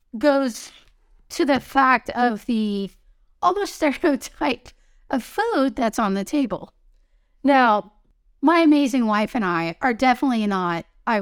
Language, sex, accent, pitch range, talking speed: English, female, American, 195-275 Hz, 130 wpm